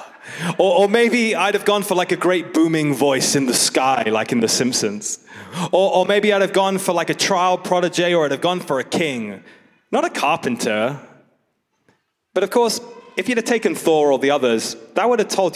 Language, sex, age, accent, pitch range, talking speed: English, male, 20-39, British, 130-180 Hz, 210 wpm